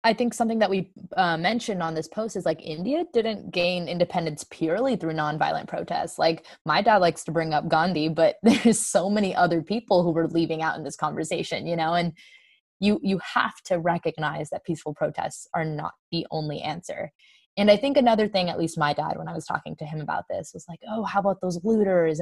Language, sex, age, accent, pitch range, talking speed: English, female, 20-39, American, 165-215 Hz, 220 wpm